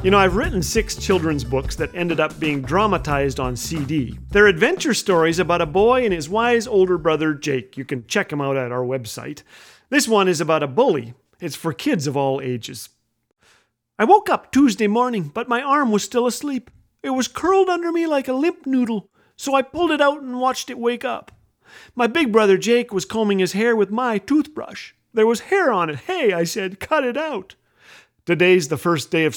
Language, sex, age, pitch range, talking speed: English, male, 40-59, 165-255 Hz, 210 wpm